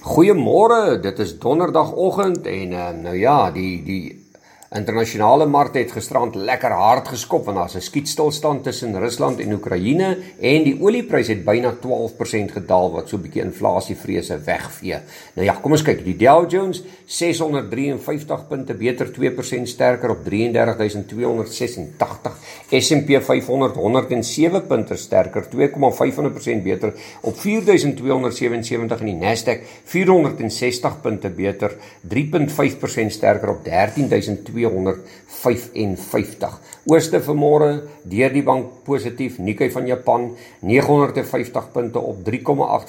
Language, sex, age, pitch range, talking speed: English, male, 50-69, 105-150 Hz, 120 wpm